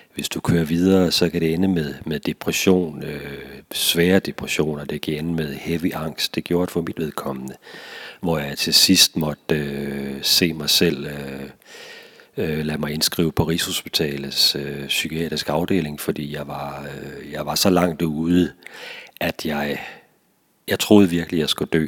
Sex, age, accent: male, 40-59, native